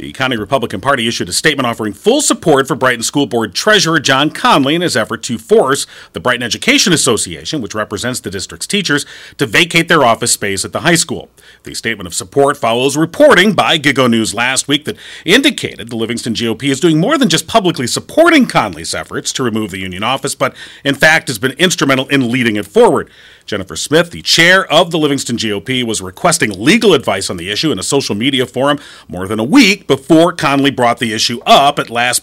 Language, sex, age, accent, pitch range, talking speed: English, male, 40-59, American, 115-165 Hz, 210 wpm